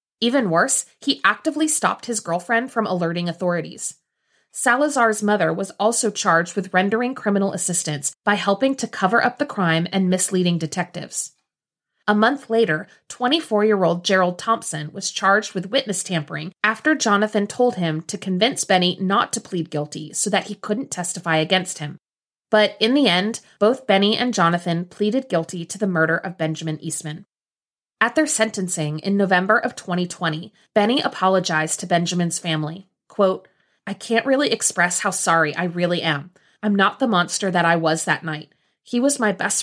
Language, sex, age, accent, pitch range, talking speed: English, female, 30-49, American, 170-215 Hz, 165 wpm